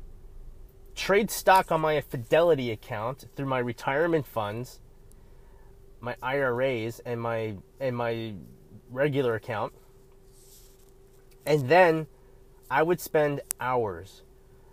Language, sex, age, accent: English, male, 30-49, American